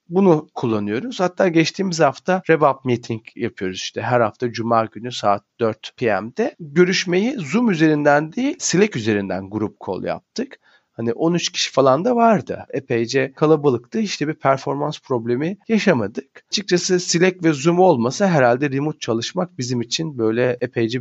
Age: 40-59